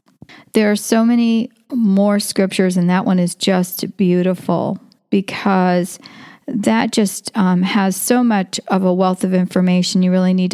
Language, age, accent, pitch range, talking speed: English, 40-59, American, 190-240 Hz, 155 wpm